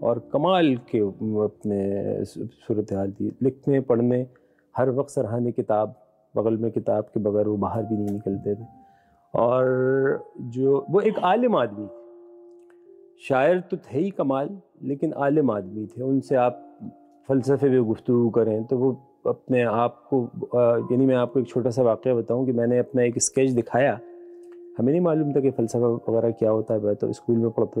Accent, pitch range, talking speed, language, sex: native, 115-165 Hz, 170 wpm, Hindi, male